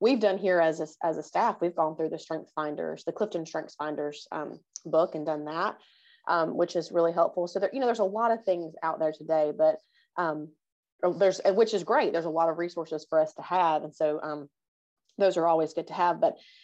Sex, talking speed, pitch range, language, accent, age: female, 230 wpm, 155-190 Hz, English, American, 30-49